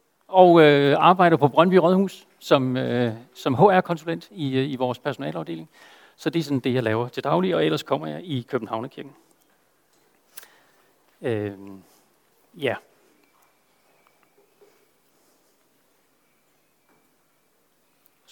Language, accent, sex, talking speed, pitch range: Danish, native, male, 110 wpm, 135-185 Hz